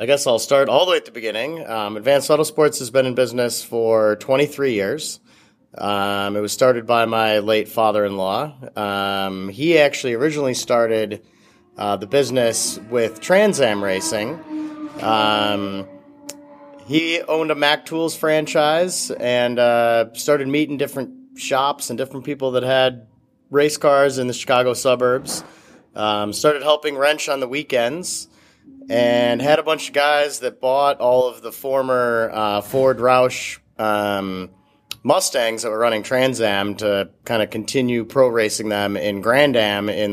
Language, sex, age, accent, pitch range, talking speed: English, male, 30-49, American, 105-140 Hz, 155 wpm